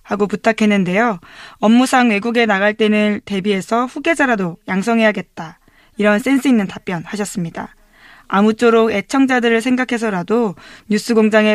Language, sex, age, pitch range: Korean, female, 20-39, 190-235 Hz